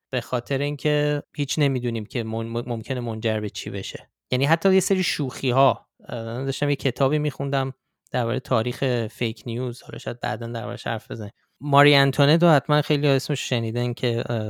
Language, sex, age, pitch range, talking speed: Persian, male, 20-39, 115-140 Hz, 160 wpm